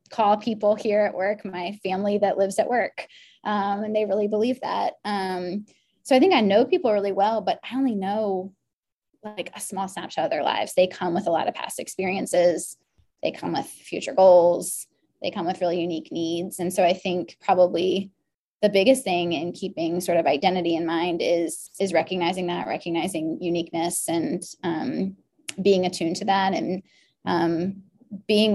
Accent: American